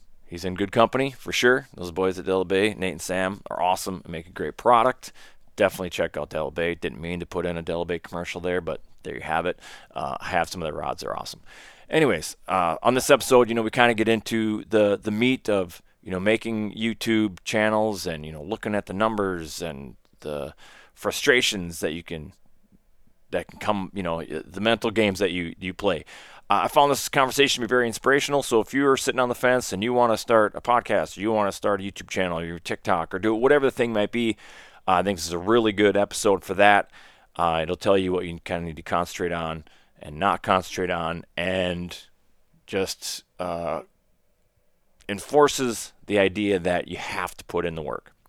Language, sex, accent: English, male, American